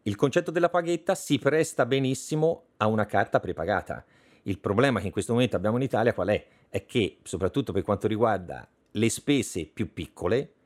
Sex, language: male, Italian